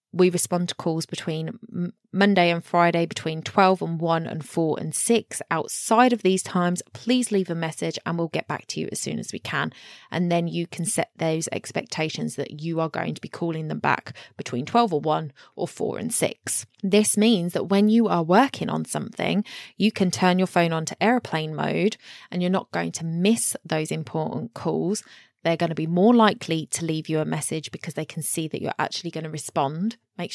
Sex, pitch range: female, 155-185 Hz